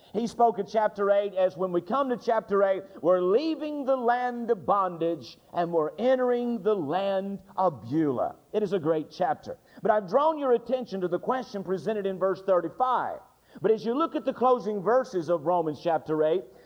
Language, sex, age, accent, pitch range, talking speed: English, male, 50-69, American, 180-250 Hz, 195 wpm